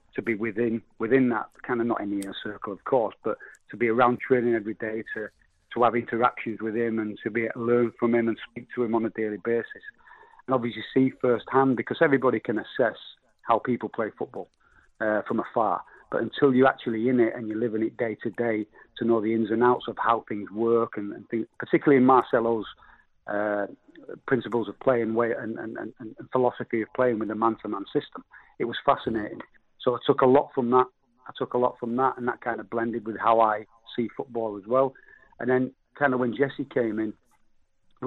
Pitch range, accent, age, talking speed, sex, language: 115-125 Hz, British, 40-59, 225 wpm, male, English